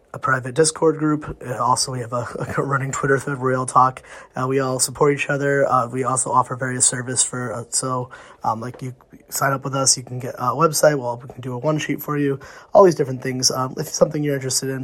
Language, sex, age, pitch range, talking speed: English, male, 20-39, 125-140 Hz, 250 wpm